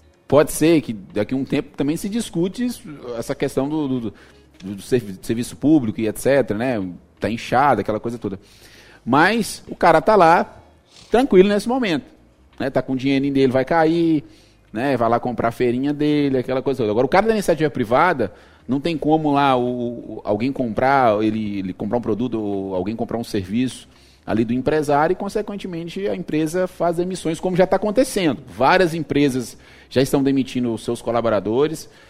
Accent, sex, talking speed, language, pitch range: Brazilian, male, 170 wpm, Portuguese, 110-145 Hz